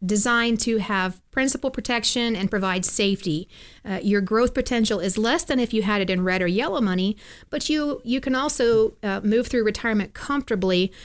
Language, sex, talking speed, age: English, female, 185 wpm, 40-59